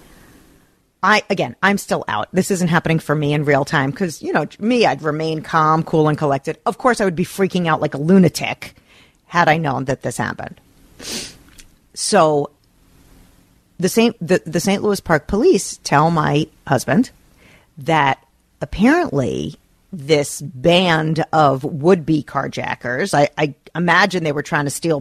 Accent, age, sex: American, 40-59, female